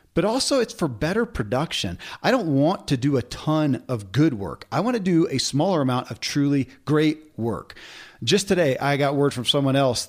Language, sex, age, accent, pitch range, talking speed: English, male, 40-59, American, 125-165 Hz, 210 wpm